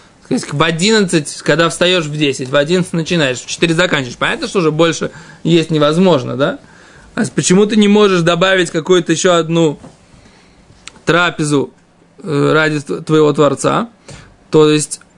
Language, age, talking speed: Russian, 20-39, 130 wpm